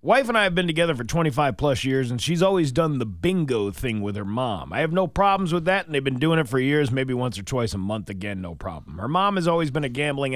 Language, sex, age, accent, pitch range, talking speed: English, male, 40-59, American, 110-145 Hz, 280 wpm